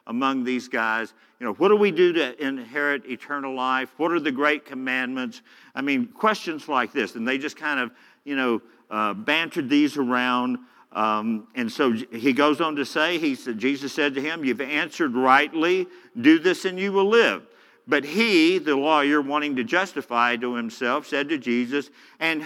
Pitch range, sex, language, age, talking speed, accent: 125-170 Hz, male, English, 50-69, 185 wpm, American